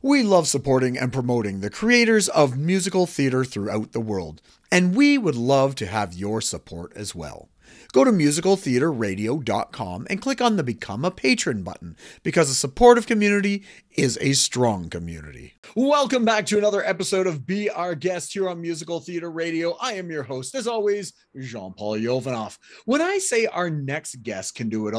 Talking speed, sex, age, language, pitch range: 175 wpm, male, 40-59, English, 130-195 Hz